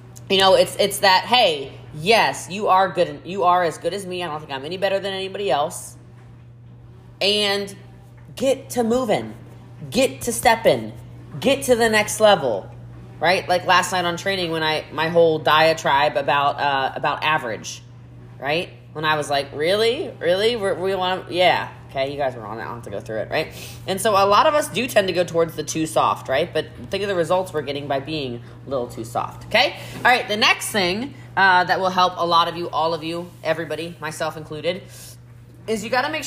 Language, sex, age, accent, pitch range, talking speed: English, female, 20-39, American, 120-190 Hz, 215 wpm